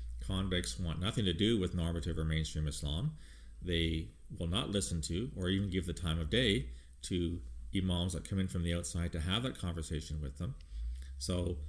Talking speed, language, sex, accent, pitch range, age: 190 wpm, English, male, American, 85-105 Hz, 40-59